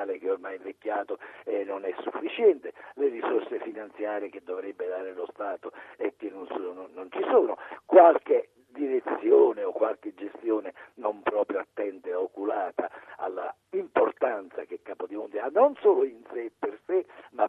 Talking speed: 155 wpm